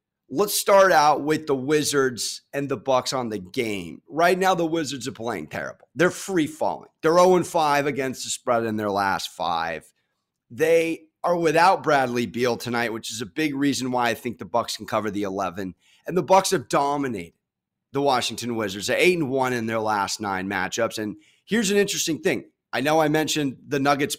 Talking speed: 190 wpm